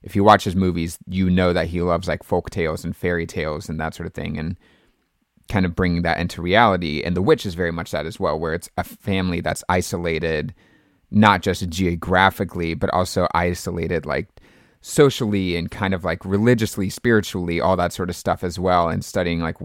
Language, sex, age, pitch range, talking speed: English, male, 30-49, 85-100 Hz, 205 wpm